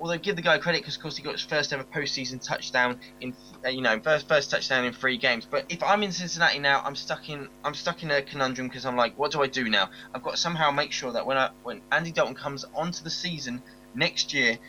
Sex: male